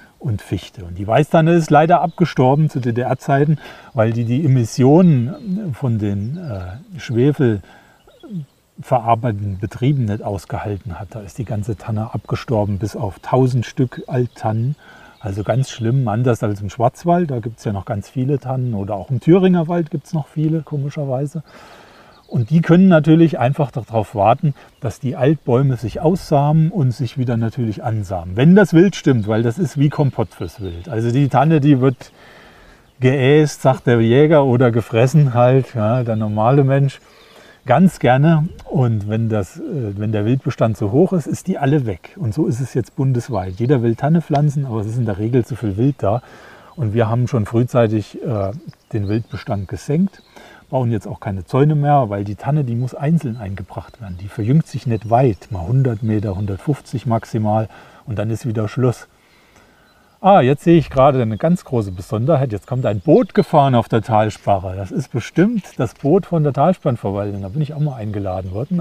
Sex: male